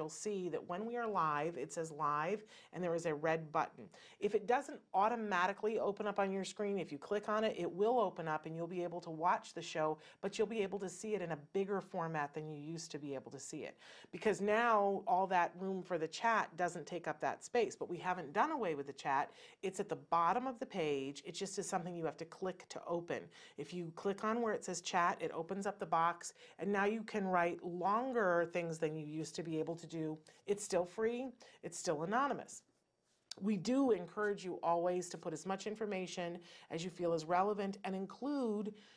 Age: 40-59